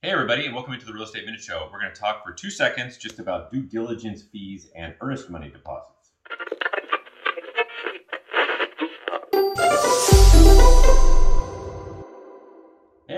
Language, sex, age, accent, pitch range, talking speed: English, male, 30-49, American, 85-125 Hz, 125 wpm